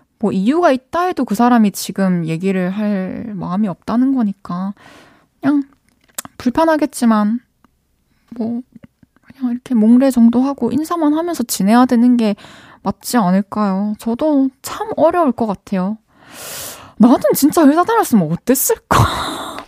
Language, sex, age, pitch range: Korean, female, 20-39, 205-275 Hz